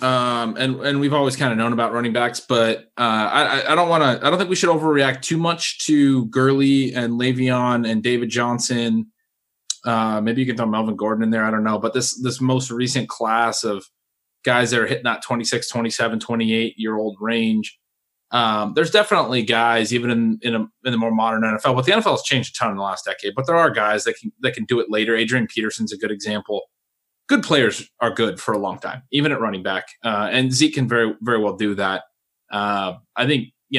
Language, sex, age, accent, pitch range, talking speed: English, male, 20-39, American, 110-135 Hz, 225 wpm